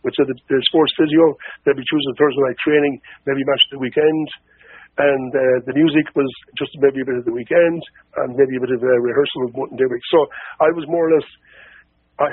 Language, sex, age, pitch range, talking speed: English, male, 50-69, 140-210 Hz, 225 wpm